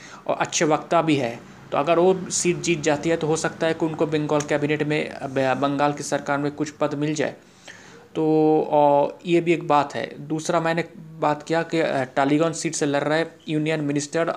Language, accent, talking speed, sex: Hindi, native, 200 wpm, male